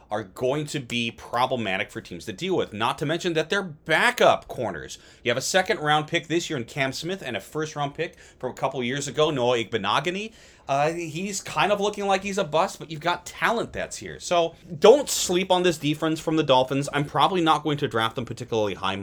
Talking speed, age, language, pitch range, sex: 225 wpm, 30-49, English, 130-185 Hz, male